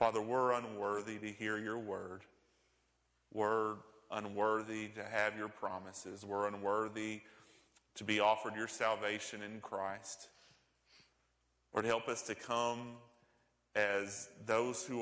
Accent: American